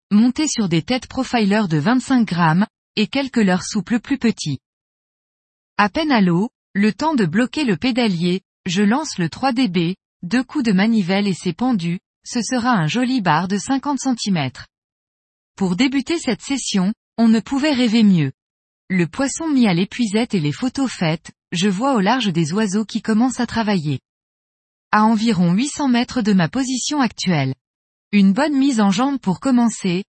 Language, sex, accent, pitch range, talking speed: French, female, French, 180-250 Hz, 170 wpm